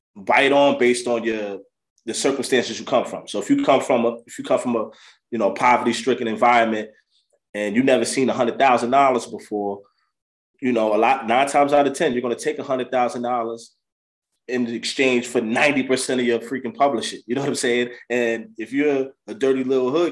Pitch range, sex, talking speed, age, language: 110-140 Hz, male, 215 wpm, 20-39, English